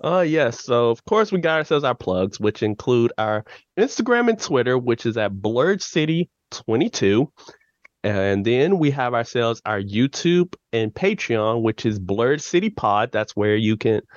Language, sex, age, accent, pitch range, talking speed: English, male, 20-39, American, 110-150 Hz, 170 wpm